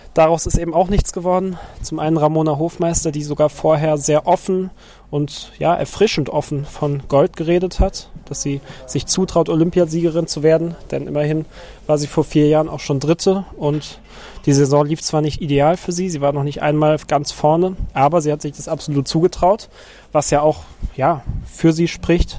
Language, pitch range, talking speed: German, 145-160 Hz, 190 wpm